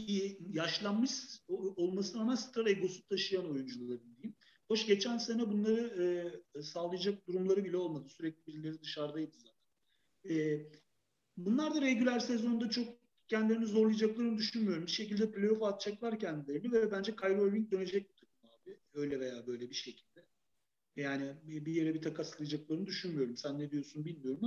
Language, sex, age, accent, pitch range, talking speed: Turkish, male, 40-59, native, 150-200 Hz, 130 wpm